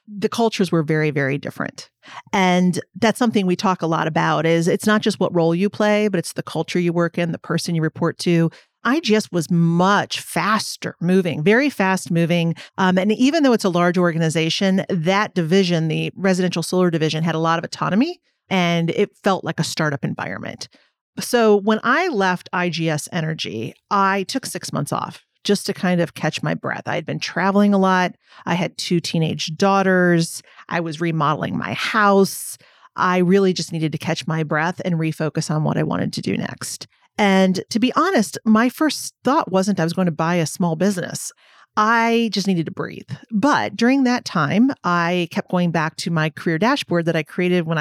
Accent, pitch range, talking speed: American, 165-205 Hz, 195 wpm